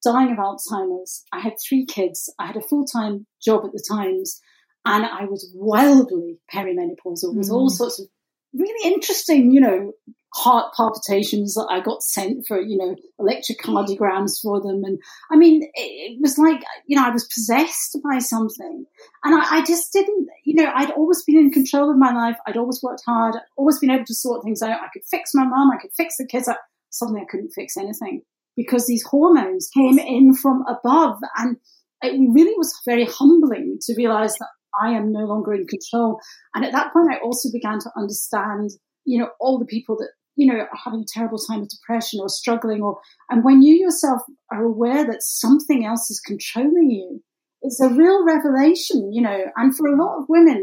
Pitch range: 225-310 Hz